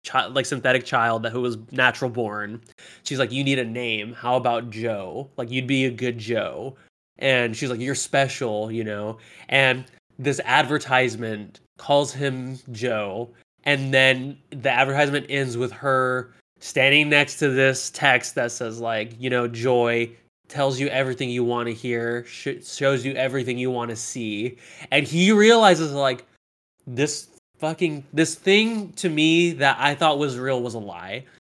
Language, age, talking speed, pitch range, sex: English, 20-39, 165 wpm, 120-150 Hz, male